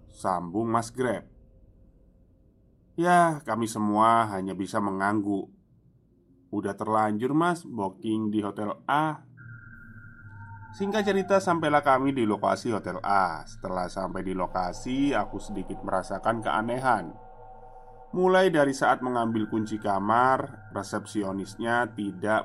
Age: 20-39